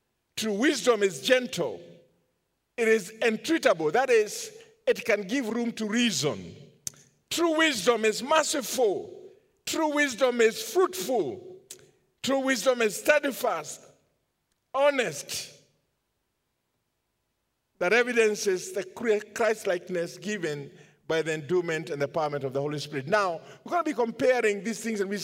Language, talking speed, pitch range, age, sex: English, 130 wpm, 180-255 Hz, 50-69, male